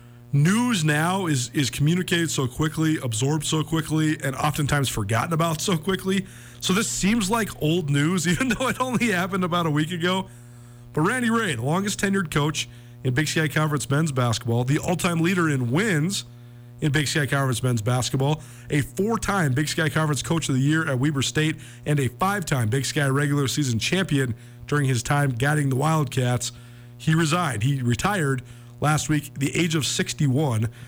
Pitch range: 120-165 Hz